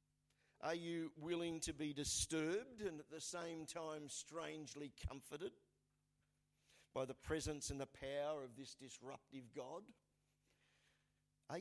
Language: English